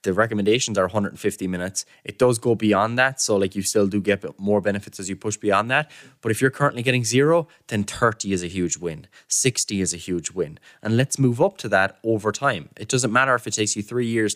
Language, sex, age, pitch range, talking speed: English, male, 20-39, 95-115 Hz, 240 wpm